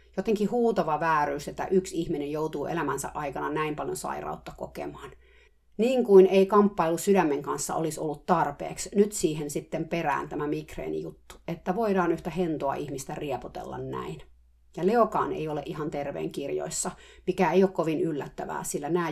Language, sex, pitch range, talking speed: Finnish, female, 155-190 Hz, 155 wpm